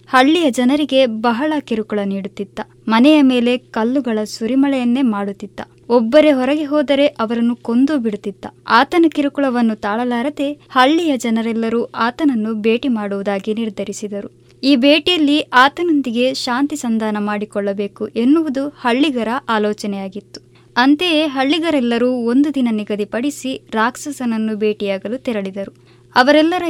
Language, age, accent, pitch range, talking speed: Kannada, 20-39, native, 215-285 Hz, 95 wpm